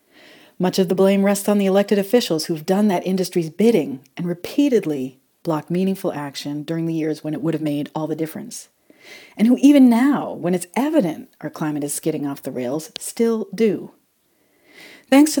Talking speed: 190 wpm